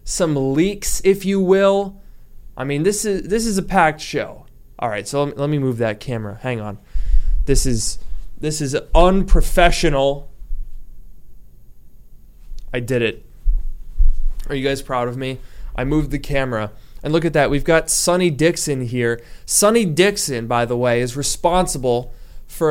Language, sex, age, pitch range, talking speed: English, male, 20-39, 120-160 Hz, 155 wpm